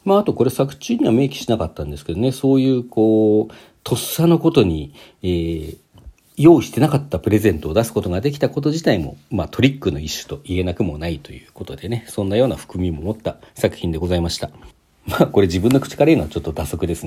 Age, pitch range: 40-59, 85-130 Hz